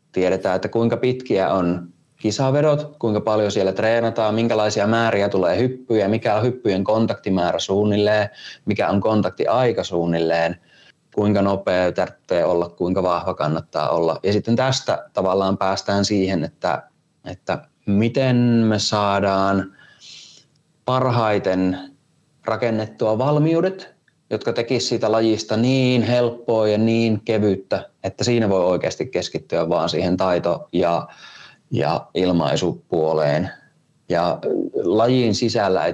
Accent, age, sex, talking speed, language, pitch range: native, 20-39, male, 115 wpm, Finnish, 95-115 Hz